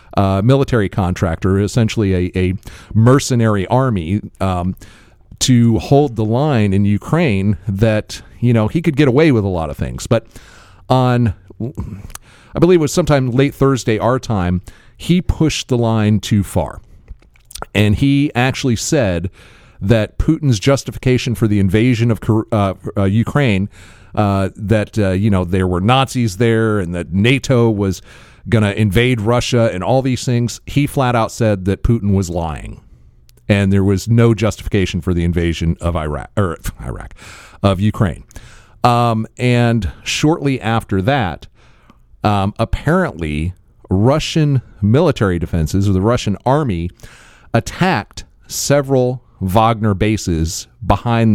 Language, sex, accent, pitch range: English, male, American, 95-120 Hz